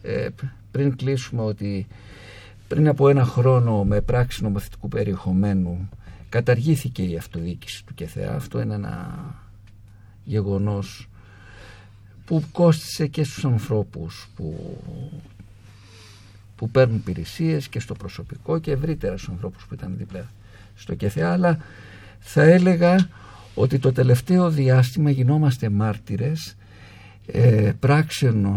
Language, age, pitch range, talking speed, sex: Greek, 50-69, 100-135 Hz, 105 wpm, male